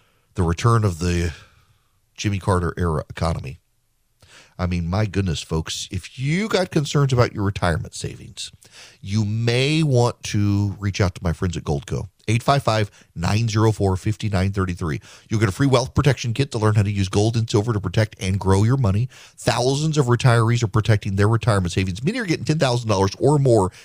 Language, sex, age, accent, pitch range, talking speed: English, male, 40-59, American, 100-130 Hz, 170 wpm